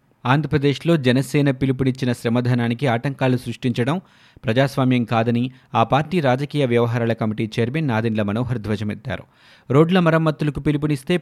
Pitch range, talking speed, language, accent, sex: 120-145 Hz, 105 wpm, Telugu, native, male